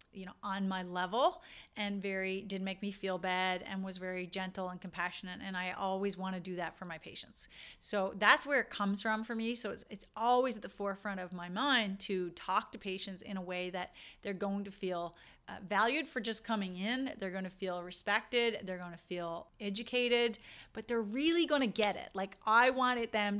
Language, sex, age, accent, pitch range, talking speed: English, female, 30-49, American, 185-225 Hz, 220 wpm